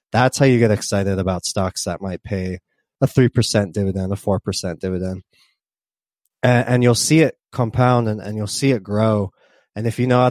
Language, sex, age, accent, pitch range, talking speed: English, male, 20-39, American, 100-120 Hz, 205 wpm